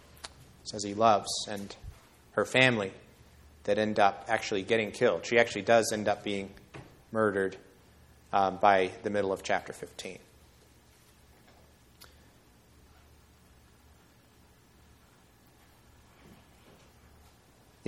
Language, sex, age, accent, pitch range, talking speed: English, male, 30-49, American, 90-120 Hz, 90 wpm